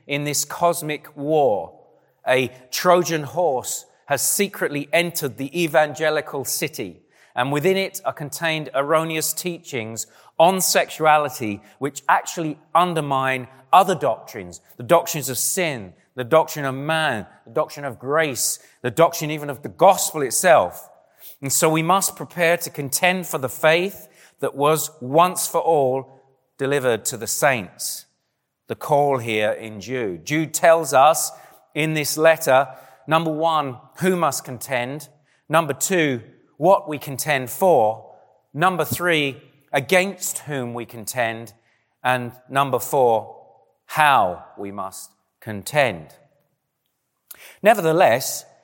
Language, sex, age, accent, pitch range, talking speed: English, male, 30-49, British, 130-170 Hz, 125 wpm